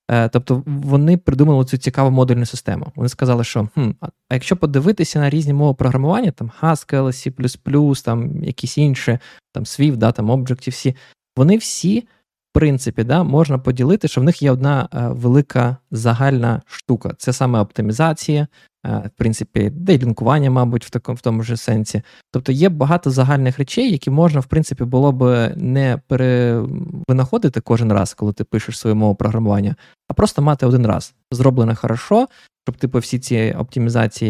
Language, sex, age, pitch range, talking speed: Ukrainian, male, 20-39, 115-145 Hz, 165 wpm